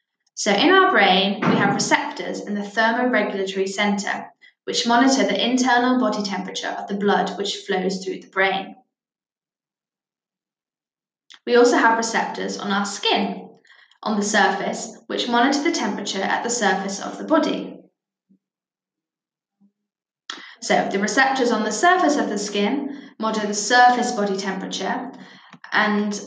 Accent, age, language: British, 10-29, English